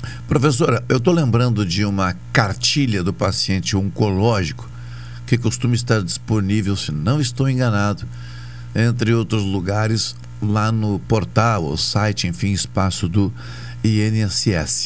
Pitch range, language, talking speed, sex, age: 95-125 Hz, Portuguese, 120 wpm, male, 60-79